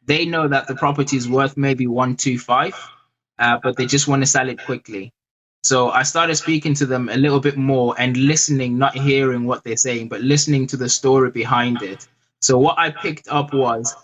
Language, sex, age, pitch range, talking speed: English, male, 20-39, 120-145 Hz, 215 wpm